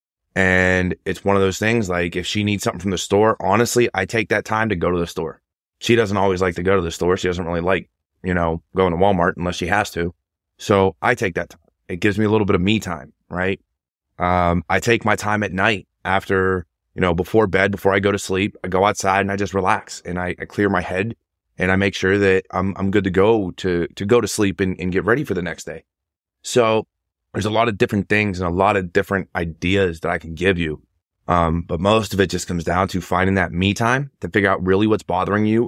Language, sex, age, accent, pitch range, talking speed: English, male, 20-39, American, 90-105 Hz, 255 wpm